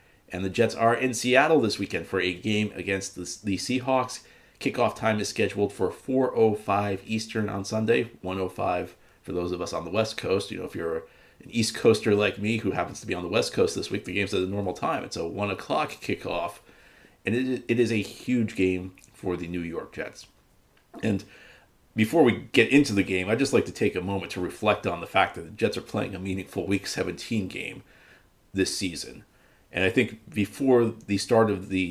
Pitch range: 95-110 Hz